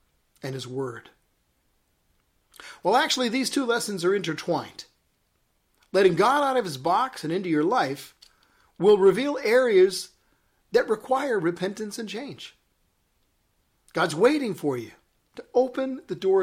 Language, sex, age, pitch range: English, male, 40-59, 145-240 Hz